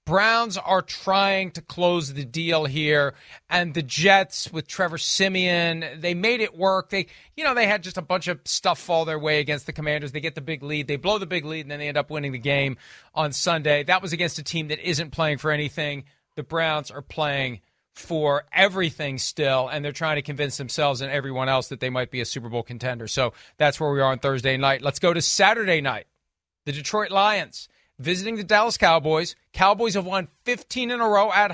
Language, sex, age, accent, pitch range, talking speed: English, male, 40-59, American, 150-200 Hz, 220 wpm